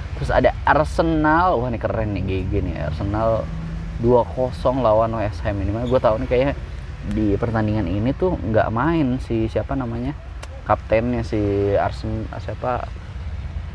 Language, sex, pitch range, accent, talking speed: Indonesian, male, 90-110 Hz, native, 135 wpm